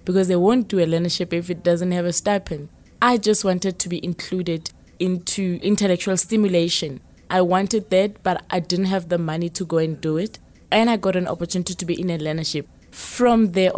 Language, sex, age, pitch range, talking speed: English, female, 20-39, 170-195 Hz, 205 wpm